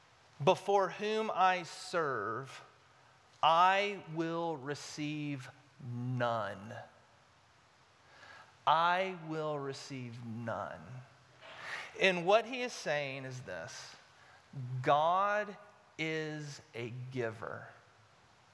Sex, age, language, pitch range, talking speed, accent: male, 40-59, English, 135-175 Hz, 75 wpm, American